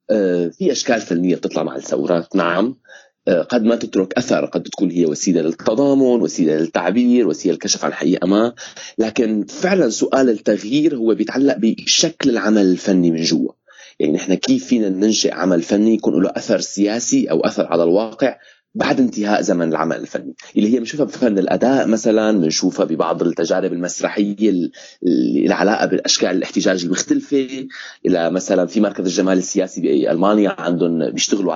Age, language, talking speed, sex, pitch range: 30-49, Arabic, 145 wpm, male, 95-130 Hz